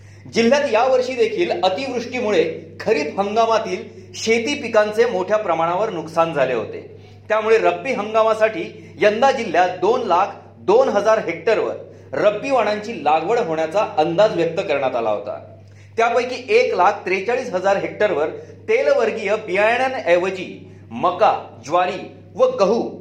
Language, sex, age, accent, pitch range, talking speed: Marathi, male, 40-59, native, 170-245 Hz, 110 wpm